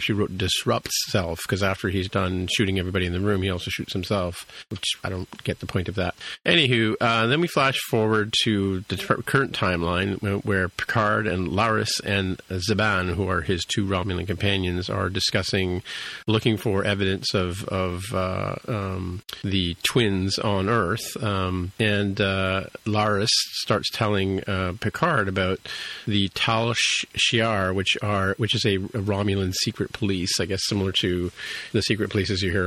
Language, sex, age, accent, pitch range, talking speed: English, male, 40-59, American, 90-105 Hz, 165 wpm